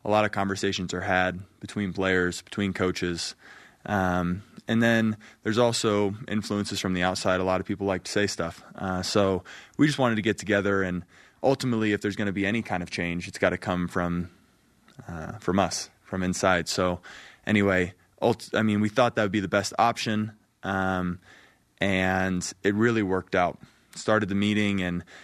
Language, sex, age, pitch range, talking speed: English, male, 20-39, 90-110 Hz, 190 wpm